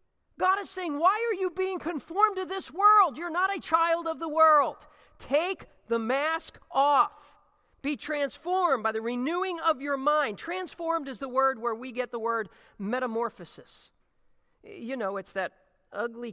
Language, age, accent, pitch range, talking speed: English, 40-59, American, 210-315 Hz, 165 wpm